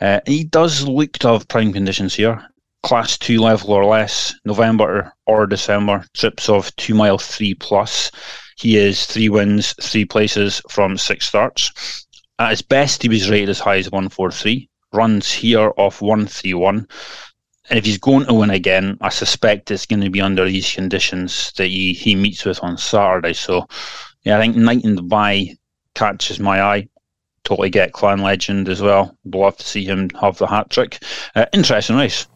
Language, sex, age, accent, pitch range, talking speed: English, male, 30-49, British, 100-115 Hz, 180 wpm